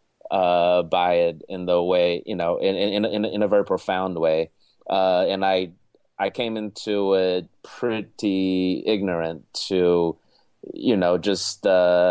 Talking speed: 150 wpm